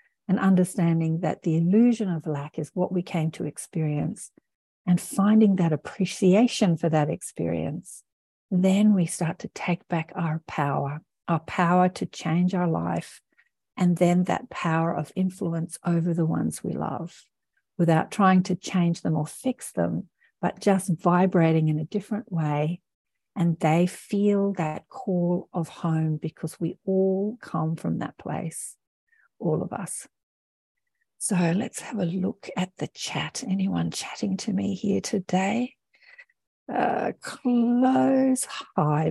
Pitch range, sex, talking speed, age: 170-240 Hz, female, 145 wpm, 50-69